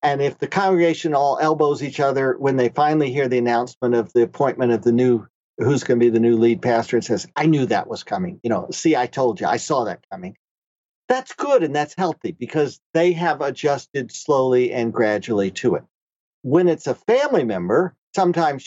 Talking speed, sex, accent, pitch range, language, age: 210 wpm, male, American, 125-170 Hz, English, 50-69